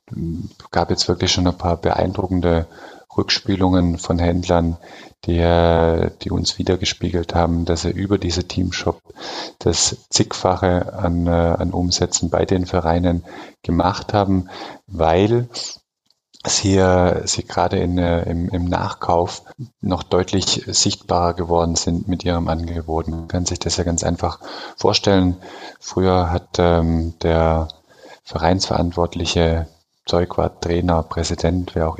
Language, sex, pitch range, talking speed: German, male, 85-90 Hz, 125 wpm